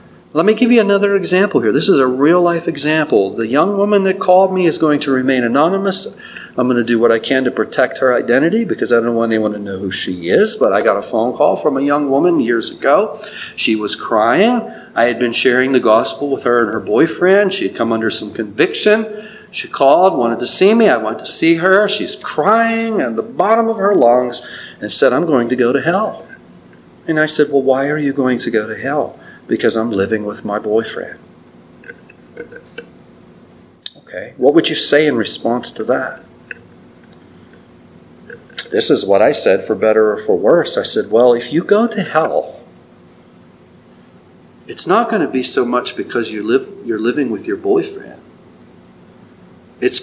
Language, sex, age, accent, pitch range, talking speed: English, male, 40-59, American, 110-180 Hz, 195 wpm